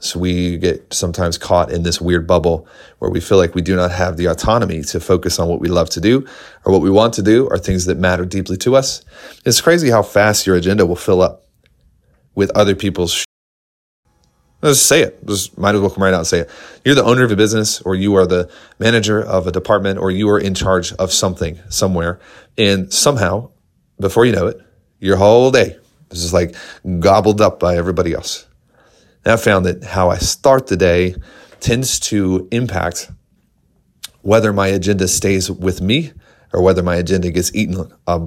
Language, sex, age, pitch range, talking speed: English, male, 30-49, 90-105 Hz, 205 wpm